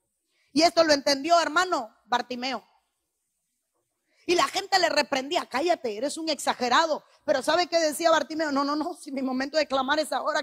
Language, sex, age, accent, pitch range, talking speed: Spanish, female, 30-49, American, 305-395 Hz, 175 wpm